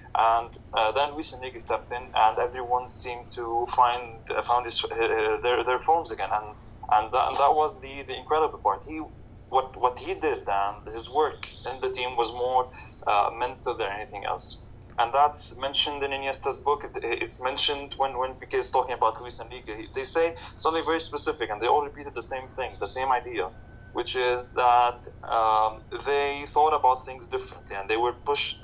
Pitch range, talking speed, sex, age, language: 115-145 Hz, 195 wpm, male, 20-39, English